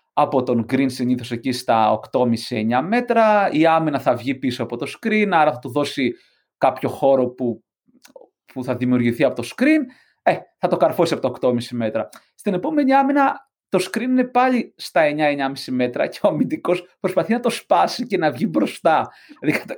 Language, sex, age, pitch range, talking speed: Greek, male, 30-49, 145-220 Hz, 180 wpm